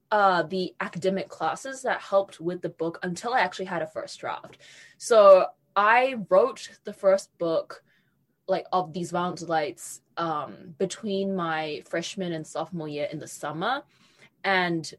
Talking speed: 150 wpm